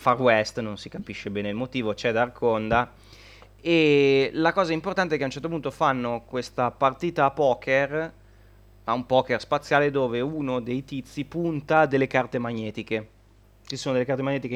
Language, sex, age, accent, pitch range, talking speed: Italian, male, 20-39, native, 105-130 Hz, 175 wpm